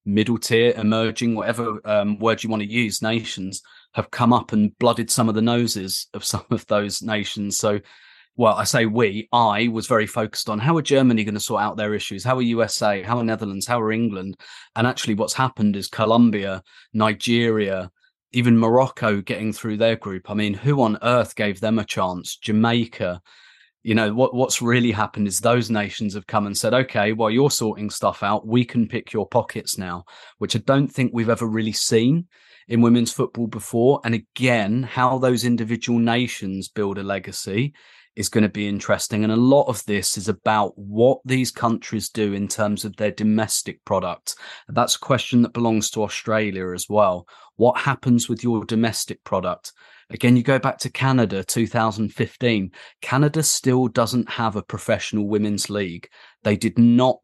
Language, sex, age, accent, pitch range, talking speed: English, male, 30-49, British, 105-120 Hz, 185 wpm